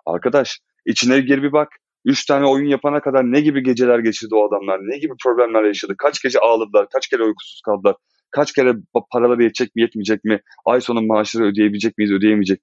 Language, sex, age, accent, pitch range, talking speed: Turkish, male, 30-49, native, 105-135 Hz, 190 wpm